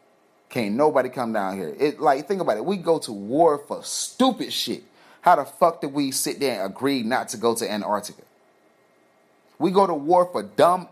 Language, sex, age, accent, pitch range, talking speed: English, male, 30-49, American, 110-150 Hz, 200 wpm